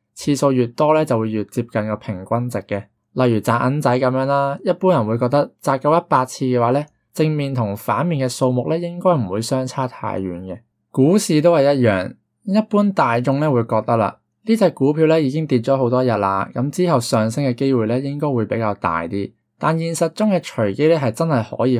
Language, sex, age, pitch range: Chinese, male, 20-39, 105-145 Hz